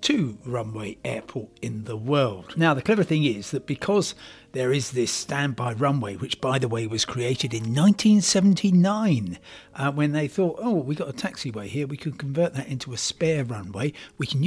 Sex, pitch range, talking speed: male, 120-170 Hz, 190 wpm